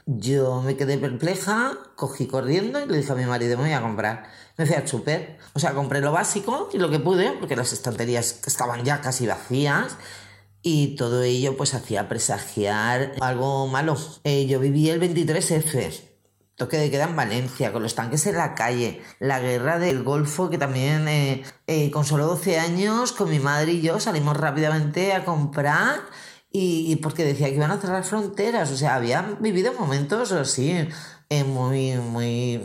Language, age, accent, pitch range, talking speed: Spanish, 30-49, Spanish, 130-170 Hz, 175 wpm